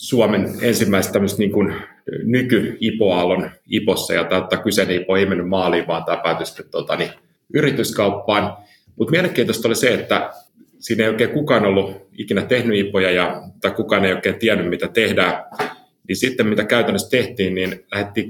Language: Finnish